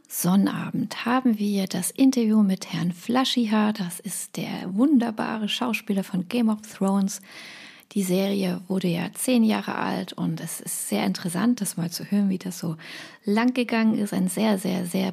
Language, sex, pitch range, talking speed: German, female, 185-225 Hz, 170 wpm